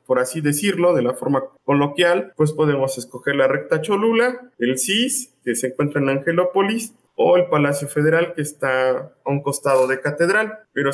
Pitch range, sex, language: 135-175 Hz, male, Spanish